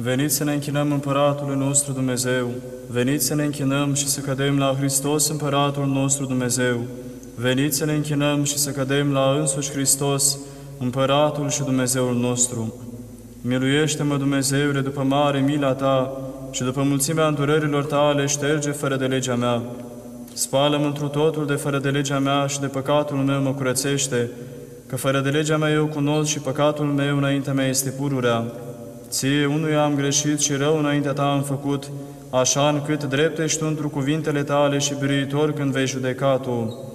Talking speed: 165 wpm